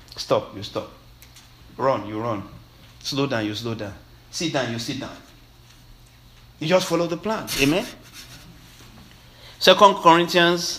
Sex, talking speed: male, 135 wpm